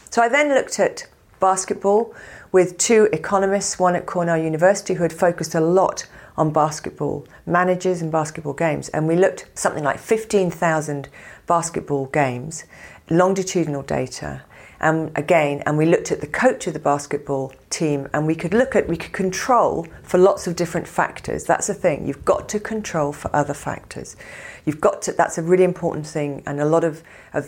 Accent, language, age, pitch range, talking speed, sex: British, English, 40-59, 145-190 Hz, 180 wpm, female